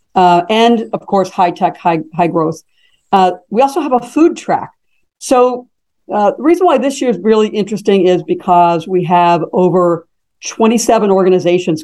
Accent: American